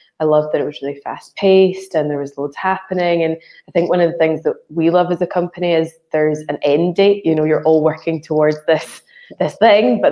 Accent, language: British, English